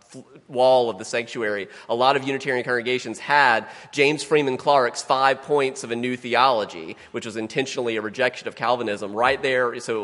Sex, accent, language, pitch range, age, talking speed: male, American, English, 115-160 Hz, 30-49, 180 wpm